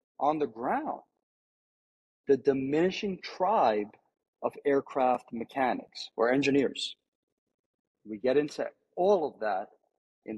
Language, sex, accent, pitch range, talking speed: English, male, American, 120-150 Hz, 105 wpm